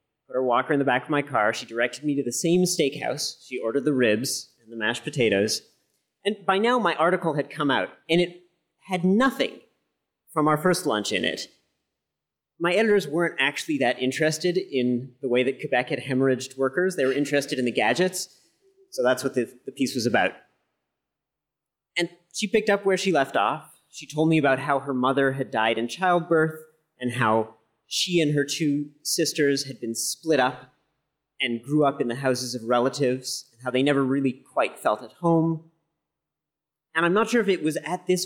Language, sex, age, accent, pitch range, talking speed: English, male, 30-49, American, 125-165 Hz, 200 wpm